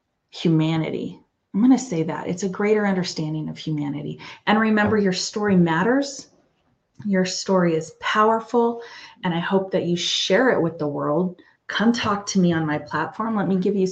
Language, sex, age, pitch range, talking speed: English, female, 30-49, 170-210 Hz, 180 wpm